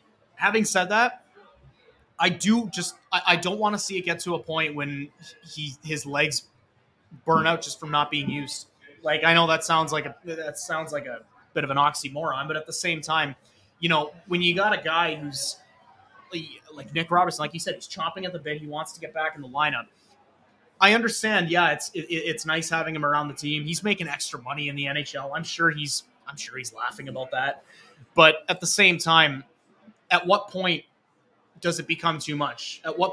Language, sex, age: English, male, 20-39